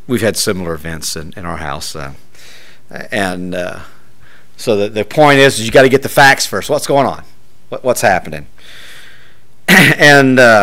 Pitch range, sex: 105-155 Hz, male